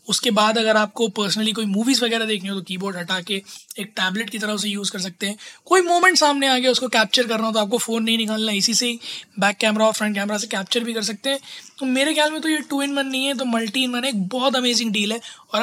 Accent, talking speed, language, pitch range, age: native, 290 wpm, Hindi, 210-250 Hz, 20-39